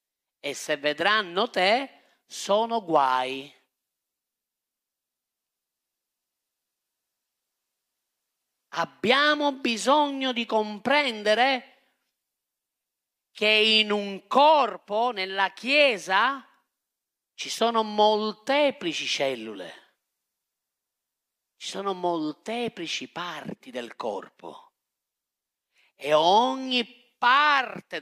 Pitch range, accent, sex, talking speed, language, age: 165-255 Hz, native, male, 60 wpm, Italian, 40-59